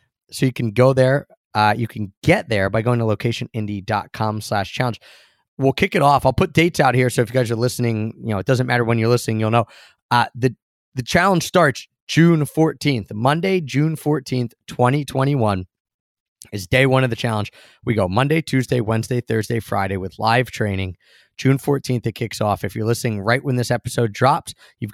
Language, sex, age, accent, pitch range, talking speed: English, male, 20-39, American, 110-145 Hz, 195 wpm